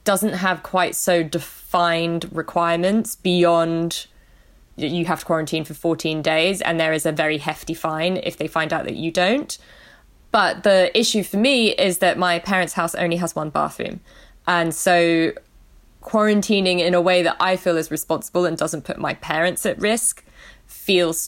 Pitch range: 160-180 Hz